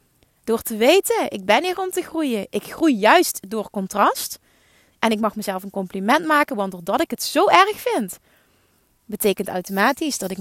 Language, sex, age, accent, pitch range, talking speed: Dutch, female, 30-49, Dutch, 195-245 Hz, 185 wpm